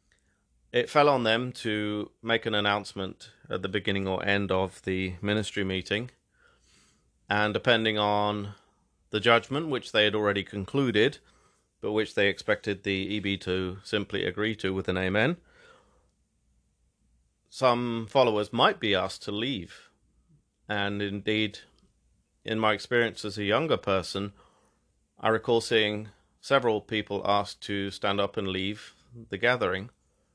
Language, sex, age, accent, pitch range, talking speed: English, male, 30-49, British, 100-115 Hz, 135 wpm